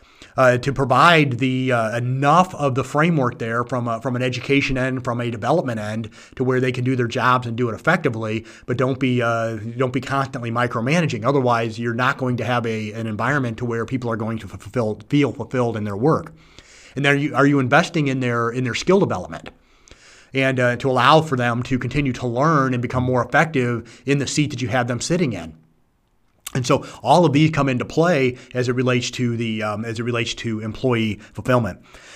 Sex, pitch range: male, 115-140 Hz